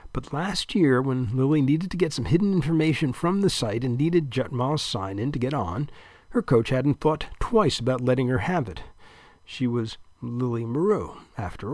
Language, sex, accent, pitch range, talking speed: English, male, American, 110-150 Hz, 185 wpm